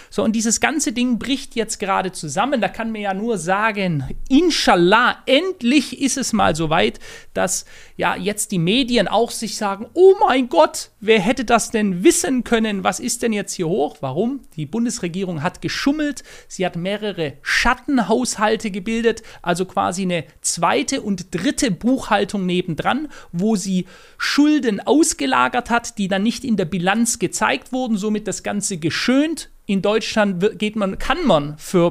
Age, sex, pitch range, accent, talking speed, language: 40-59, male, 185-240 Hz, German, 165 wpm, German